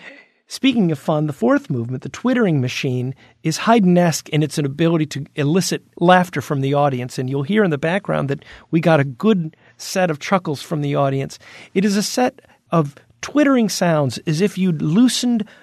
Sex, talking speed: male, 185 wpm